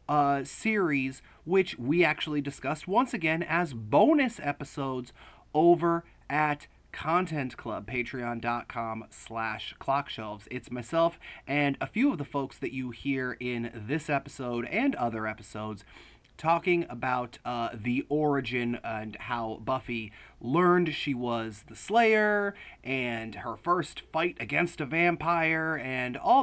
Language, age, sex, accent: English, 30-49, male, American